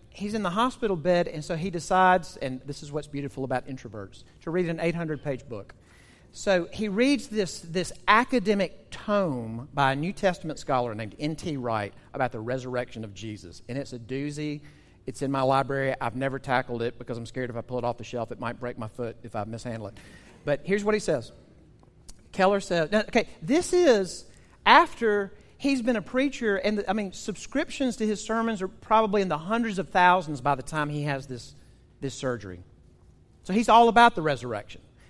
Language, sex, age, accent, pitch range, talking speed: English, male, 40-59, American, 125-185 Hz, 195 wpm